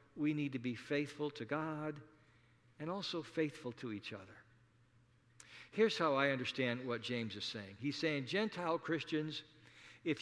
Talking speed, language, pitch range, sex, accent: 155 wpm, English, 120-195 Hz, male, American